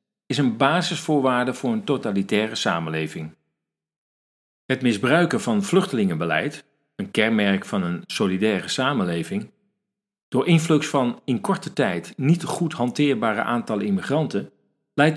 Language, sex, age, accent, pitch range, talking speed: Dutch, male, 40-59, Dutch, 120-175 Hz, 115 wpm